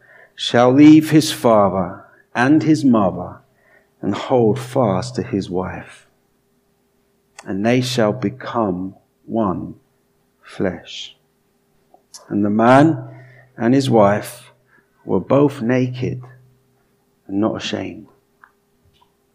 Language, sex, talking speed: English, male, 95 wpm